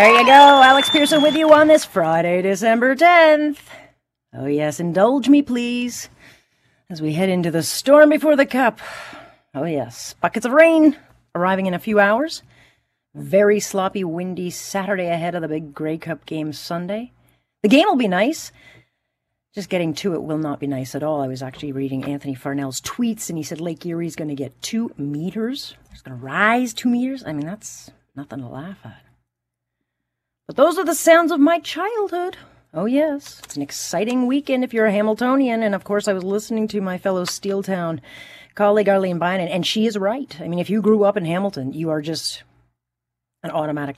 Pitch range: 145-225 Hz